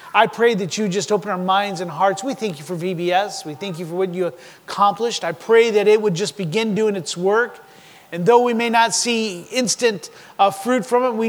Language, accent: English, American